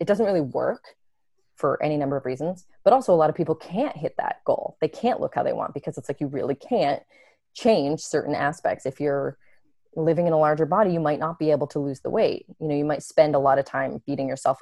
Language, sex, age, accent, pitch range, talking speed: English, female, 20-39, American, 145-180 Hz, 250 wpm